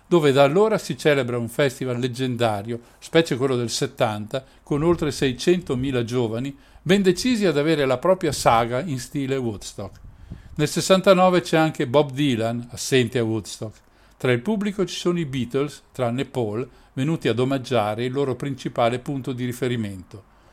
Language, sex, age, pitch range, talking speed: Italian, male, 50-69, 120-155 Hz, 155 wpm